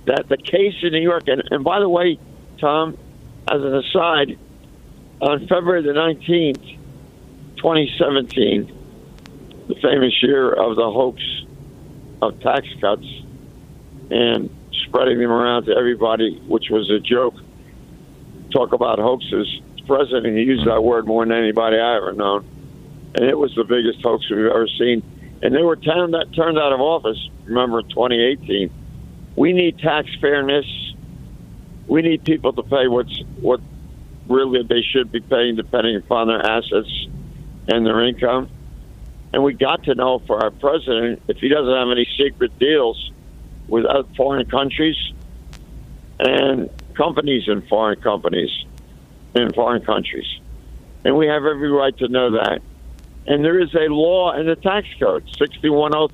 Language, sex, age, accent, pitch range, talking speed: English, male, 50-69, American, 115-155 Hz, 150 wpm